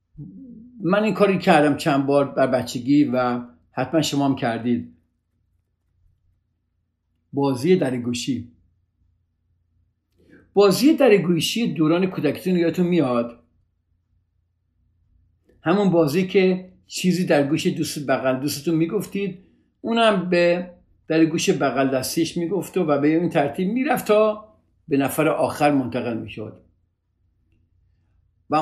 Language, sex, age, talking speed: Persian, male, 50-69, 105 wpm